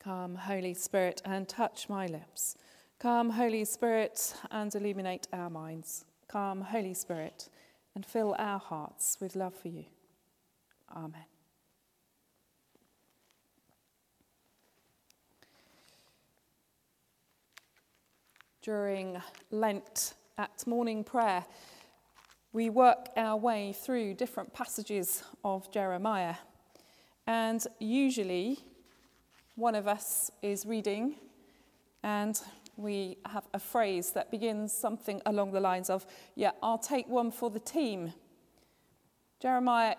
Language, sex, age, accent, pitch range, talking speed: English, female, 30-49, British, 190-230 Hz, 100 wpm